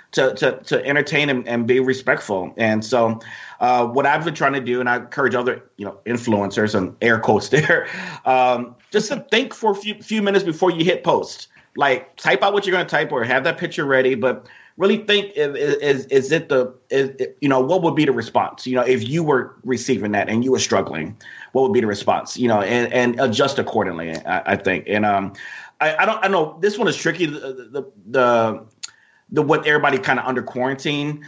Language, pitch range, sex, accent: English, 125-165 Hz, male, American